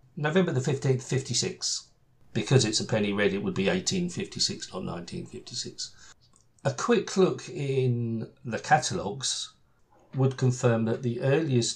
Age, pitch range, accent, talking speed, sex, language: 50-69, 110-135 Hz, British, 135 wpm, male, English